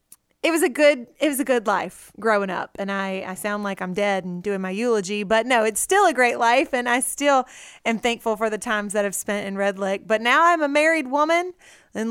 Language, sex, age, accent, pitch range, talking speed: English, female, 30-49, American, 210-250 Hz, 250 wpm